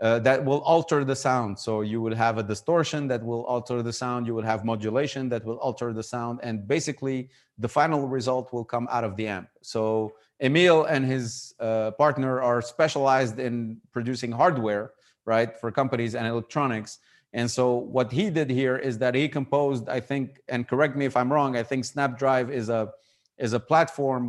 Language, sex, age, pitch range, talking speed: English, male, 30-49, 120-140 Hz, 195 wpm